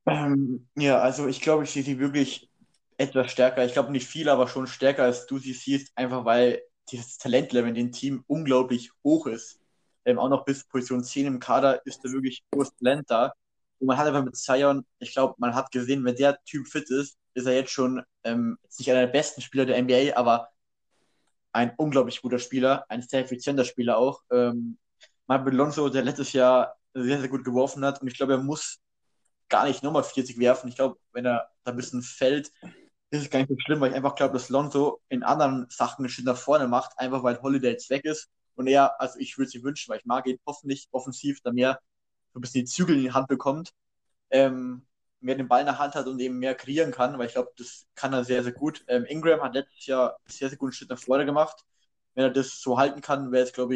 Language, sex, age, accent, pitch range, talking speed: German, male, 20-39, German, 125-140 Hz, 230 wpm